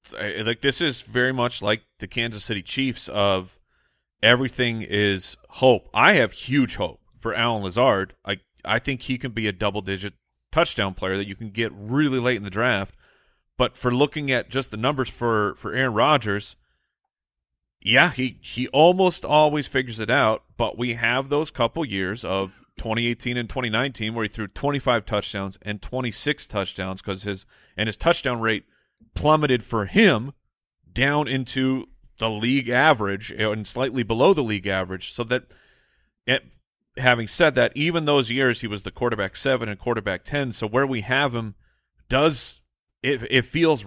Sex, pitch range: male, 105-130 Hz